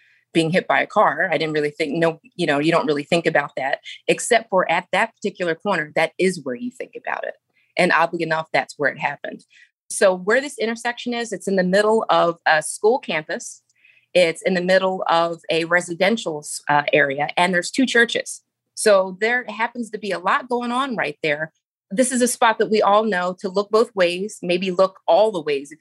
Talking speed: 215 wpm